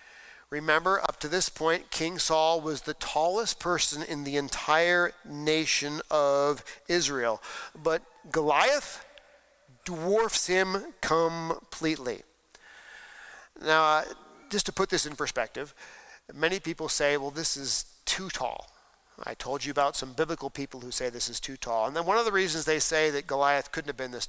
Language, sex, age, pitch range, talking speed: English, male, 40-59, 150-180 Hz, 160 wpm